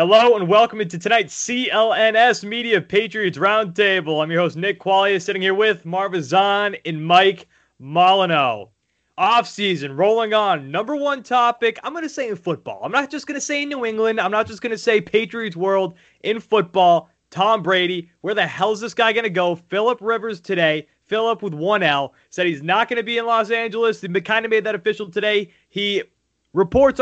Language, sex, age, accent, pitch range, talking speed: English, male, 30-49, American, 175-225 Hz, 195 wpm